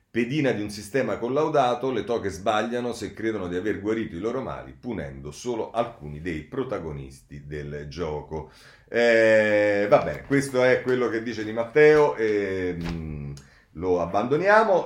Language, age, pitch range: Italian, 40-59, 100-130 Hz